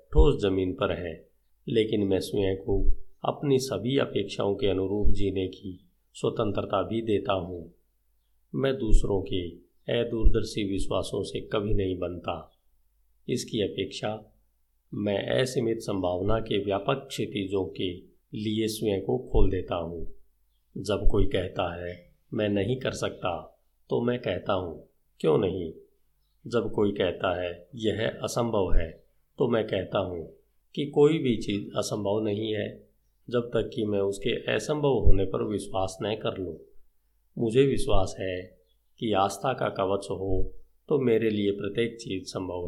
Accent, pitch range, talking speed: native, 95-110 Hz, 145 wpm